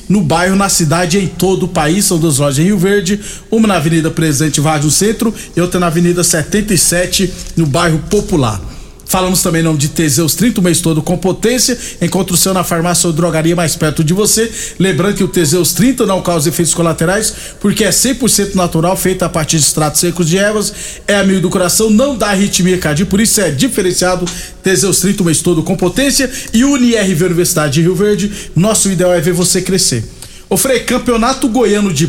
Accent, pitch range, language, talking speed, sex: Brazilian, 170-200 Hz, Portuguese, 200 wpm, male